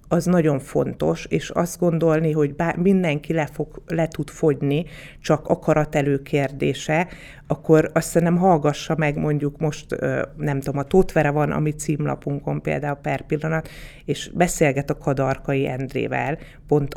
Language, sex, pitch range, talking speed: Hungarian, female, 145-170 Hz, 140 wpm